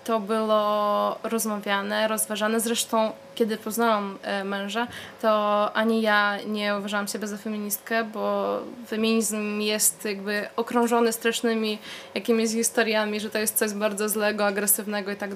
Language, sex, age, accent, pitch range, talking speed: Polish, female, 20-39, native, 205-225 Hz, 130 wpm